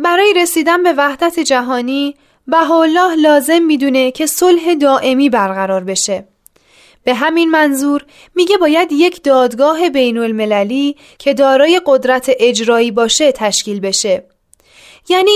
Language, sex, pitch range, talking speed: Persian, female, 245-325 Hz, 120 wpm